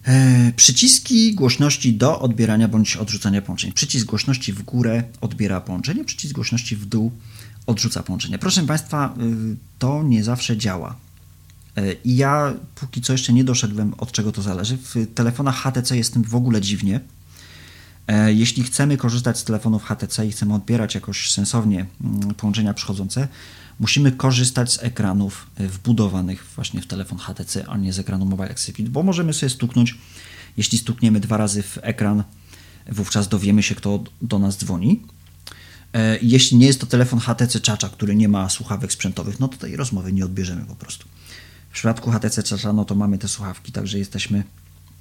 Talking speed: 160 wpm